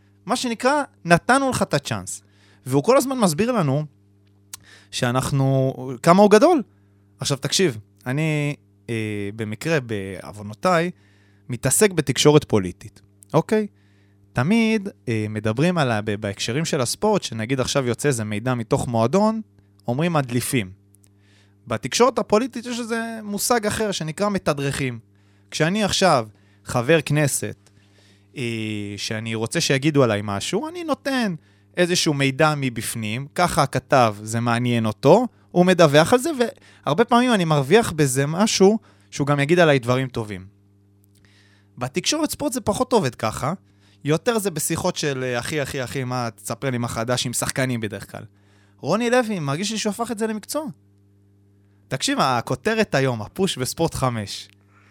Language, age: Hebrew, 20-39